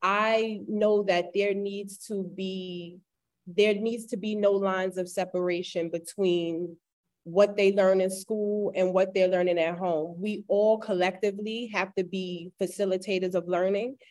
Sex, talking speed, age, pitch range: female, 155 wpm, 20-39, 185-215 Hz